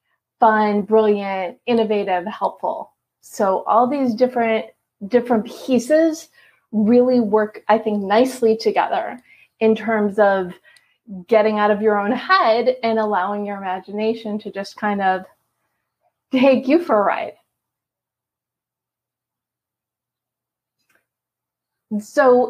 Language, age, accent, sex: English, 30-49, American, female